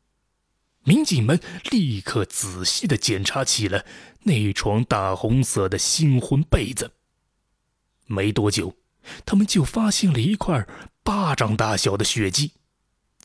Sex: male